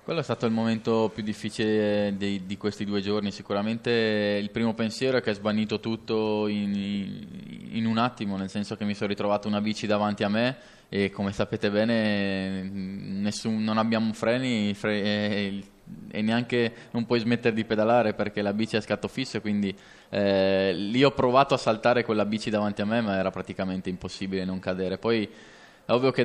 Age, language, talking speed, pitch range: 20-39, Italian, 185 wpm, 100-115 Hz